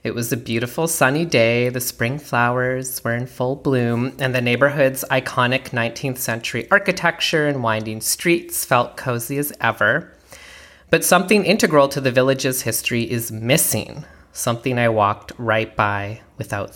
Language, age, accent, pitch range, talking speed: English, 30-49, American, 110-140 Hz, 150 wpm